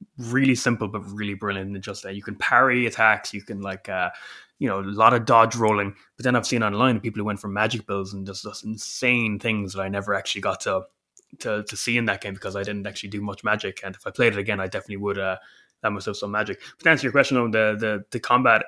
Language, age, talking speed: English, 20-39, 270 wpm